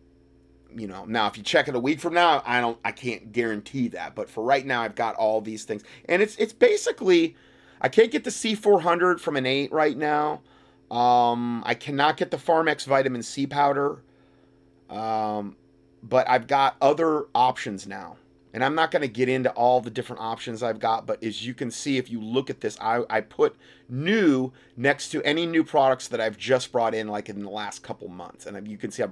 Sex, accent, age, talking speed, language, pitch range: male, American, 30-49, 215 wpm, English, 105-135 Hz